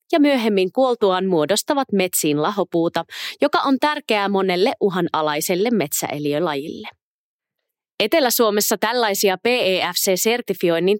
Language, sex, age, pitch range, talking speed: Finnish, female, 20-39, 185-255 Hz, 80 wpm